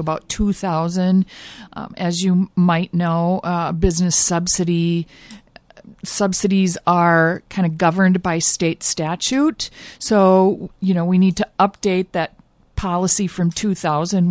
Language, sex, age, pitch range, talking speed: English, female, 50-69, 170-200 Hz, 120 wpm